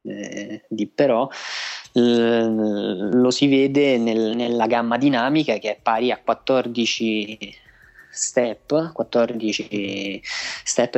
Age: 20-39